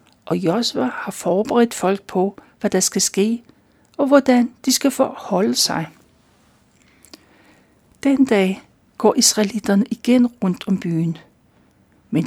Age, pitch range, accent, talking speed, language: 60-79, 190-245 Hz, native, 120 wpm, Danish